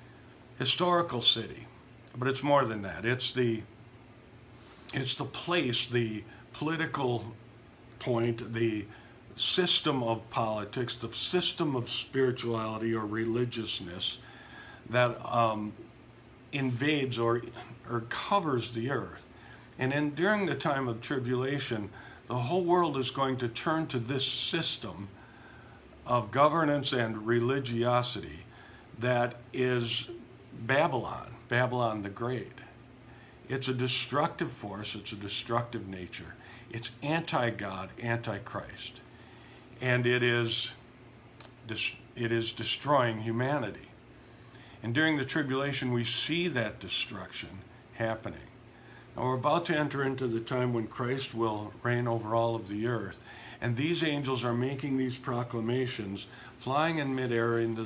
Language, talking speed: English, 120 wpm